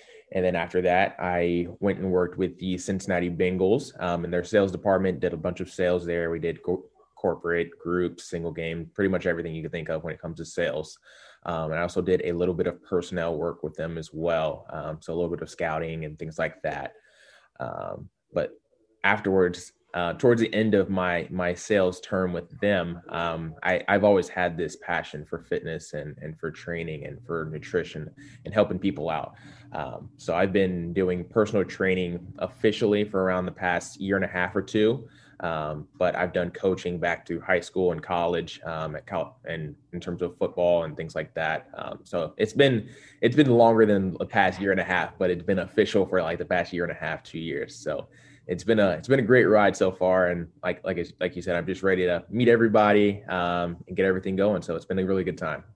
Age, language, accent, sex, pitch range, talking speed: 20-39, English, American, male, 85-95 Hz, 220 wpm